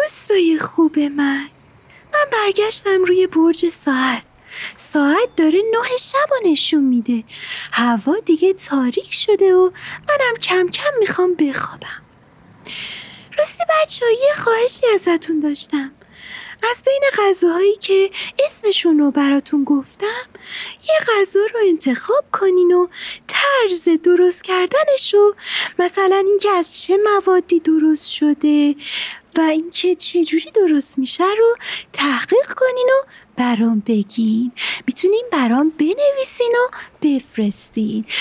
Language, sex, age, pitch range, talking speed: Persian, female, 30-49, 290-400 Hz, 110 wpm